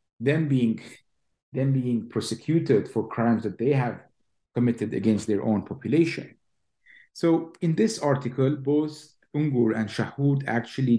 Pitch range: 120-170 Hz